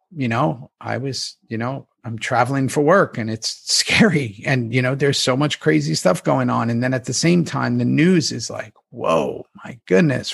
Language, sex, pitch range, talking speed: English, male, 125-155 Hz, 210 wpm